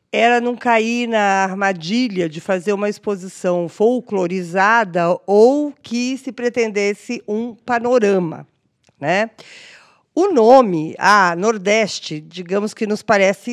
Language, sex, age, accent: Portuguese, female, 50-69, Brazilian